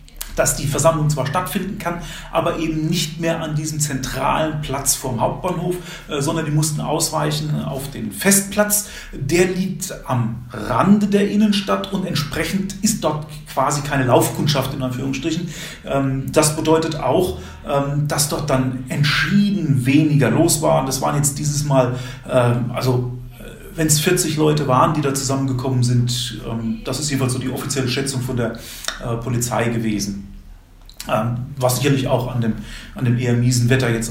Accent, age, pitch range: German, 40-59, 130-180 Hz